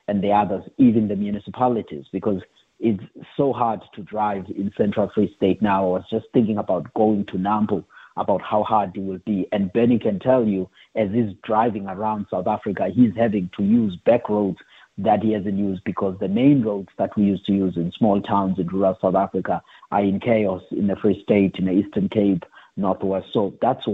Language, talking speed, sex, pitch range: English, 205 wpm, male, 95-115 Hz